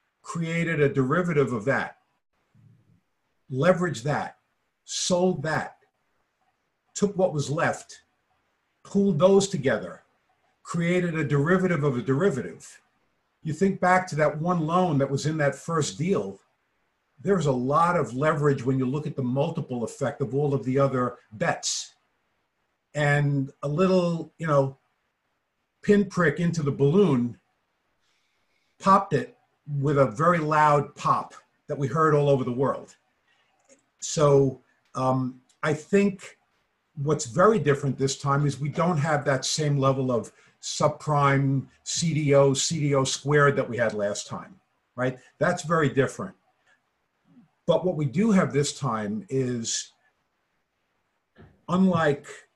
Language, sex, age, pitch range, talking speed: English, male, 50-69, 135-165 Hz, 130 wpm